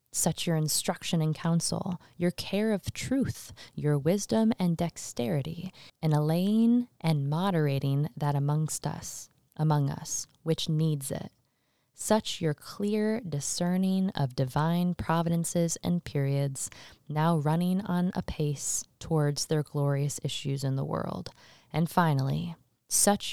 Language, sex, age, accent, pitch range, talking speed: English, female, 20-39, American, 140-175 Hz, 125 wpm